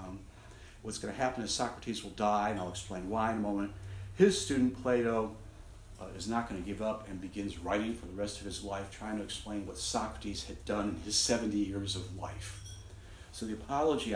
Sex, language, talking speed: male, English, 210 wpm